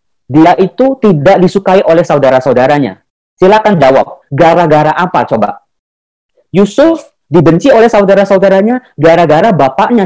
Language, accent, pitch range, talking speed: Indonesian, native, 165-205 Hz, 100 wpm